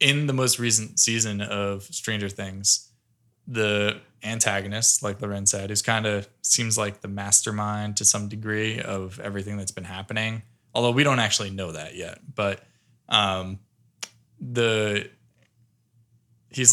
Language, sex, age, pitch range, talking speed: English, male, 20-39, 105-120 Hz, 140 wpm